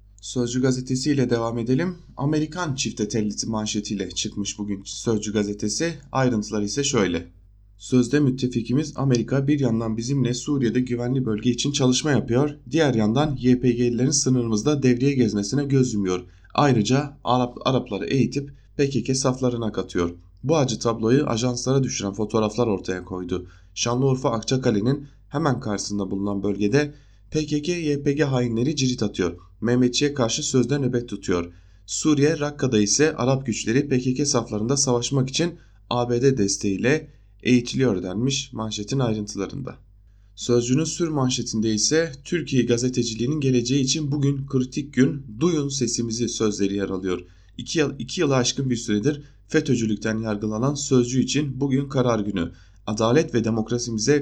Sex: male